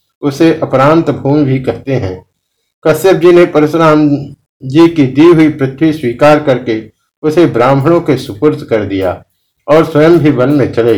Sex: male